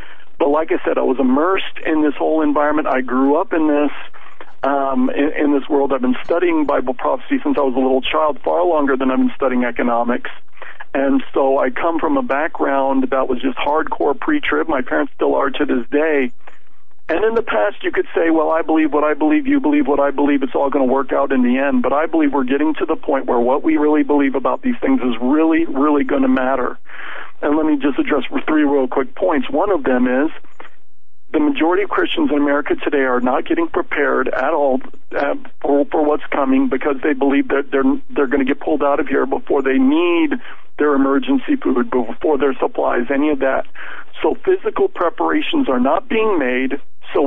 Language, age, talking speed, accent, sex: English, 50-69, 215 wpm, American, male